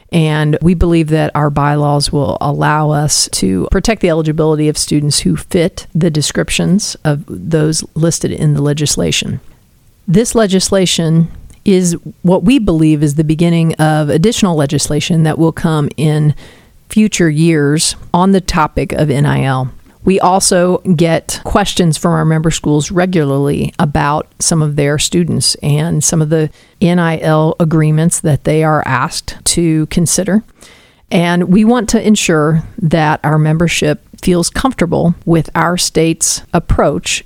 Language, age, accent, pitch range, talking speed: English, 40-59, American, 150-180 Hz, 140 wpm